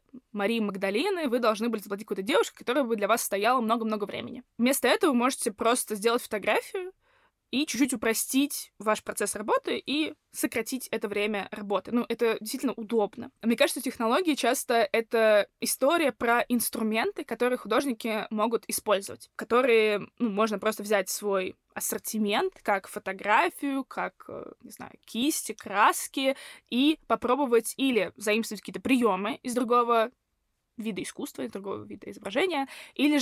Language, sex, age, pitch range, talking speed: Russian, female, 20-39, 215-260 Hz, 145 wpm